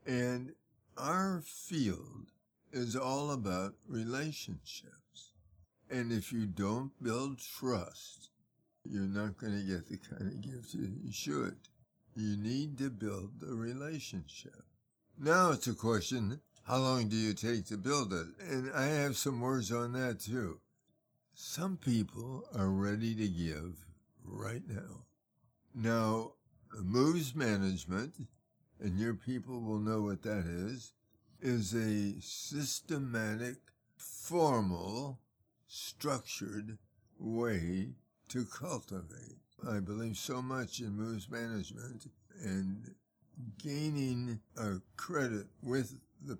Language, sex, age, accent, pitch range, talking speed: English, male, 60-79, American, 100-130 Hz, 115 wpm